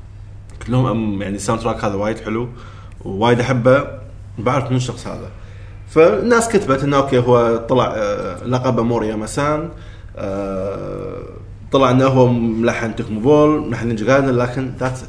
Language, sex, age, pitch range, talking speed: Arabic, male, 20-39, 100-135 Hz, 120 wpm